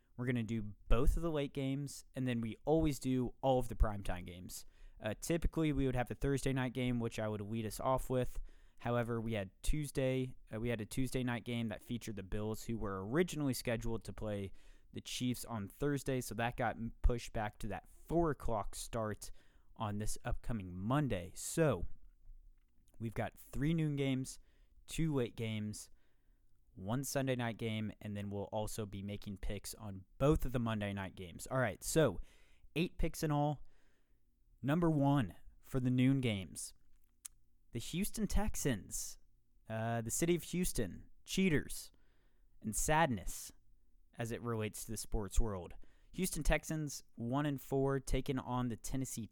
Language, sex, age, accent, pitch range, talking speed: English, male, 20-39, American, 100-135 Hz, 170 wpm